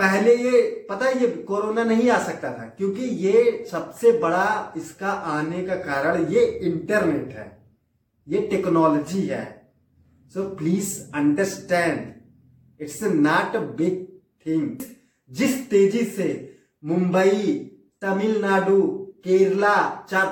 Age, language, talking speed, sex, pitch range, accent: 30-49, Hindi, 115 wpm, male, 165-230 Hz, native